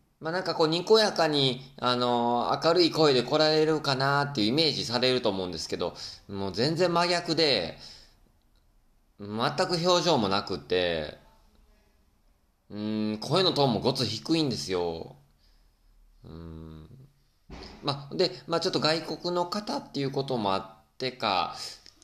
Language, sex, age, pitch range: Japanese, male, 20-39, 100-155 Hz